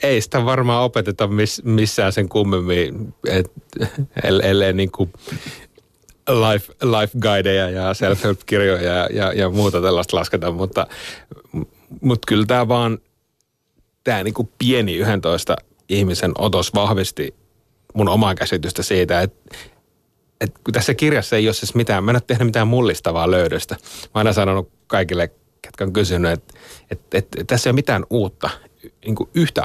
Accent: native